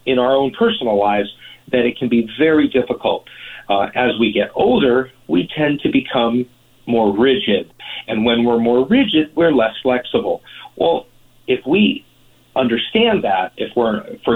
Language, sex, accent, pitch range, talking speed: English, male, American, 110-135 Hz, 160 wpm